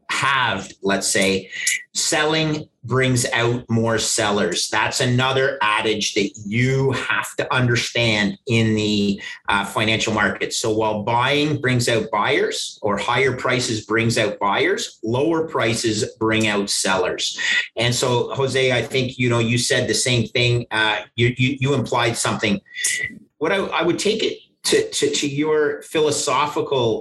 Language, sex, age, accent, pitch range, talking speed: English, male, 40-59, American, 110-135 Hz, 150 wpm